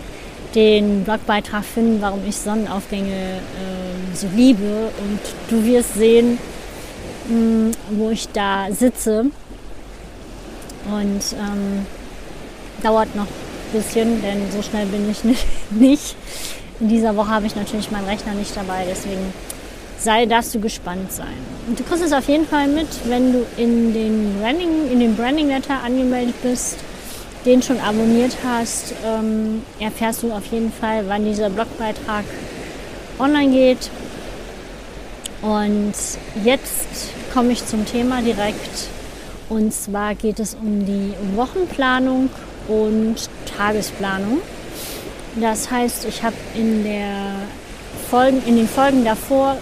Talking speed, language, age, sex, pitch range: 125 wpm, German, 20-39, female, 210-245 Hz